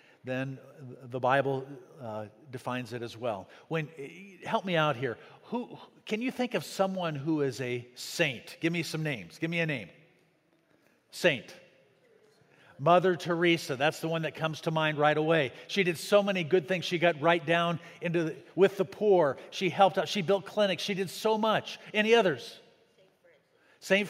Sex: male